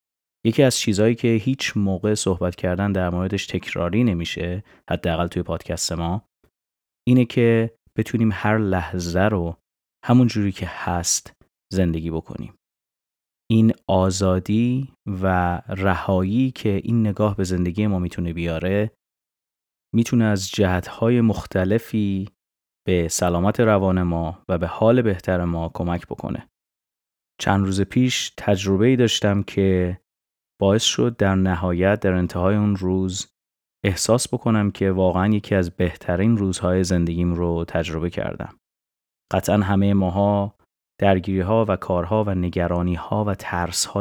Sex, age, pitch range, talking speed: male, 30-49, 85-105 Hz, 125 wpm